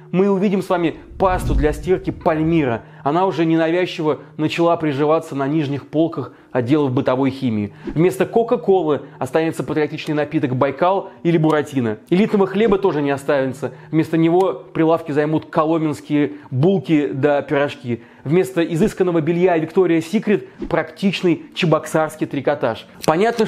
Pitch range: 150-180 Hz